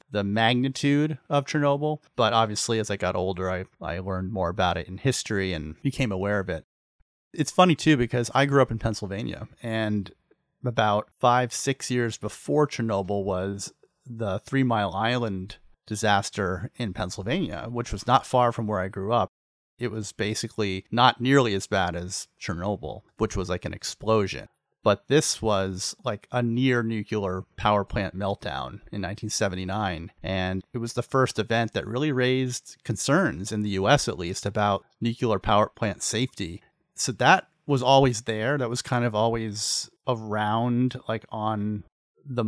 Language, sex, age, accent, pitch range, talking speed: English, male, 30-49, American, 100-120 Hz, 160 wpm